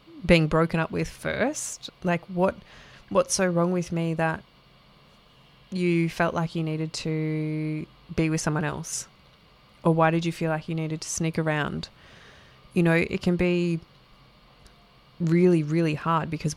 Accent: Australian